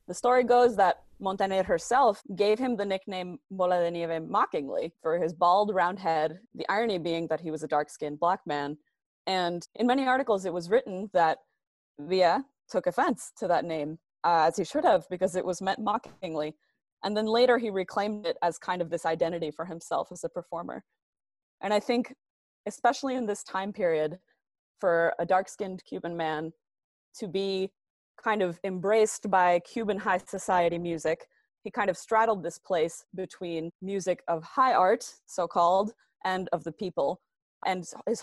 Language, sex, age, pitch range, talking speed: English, female, 20-39, 170-210 Hz, 175 wpm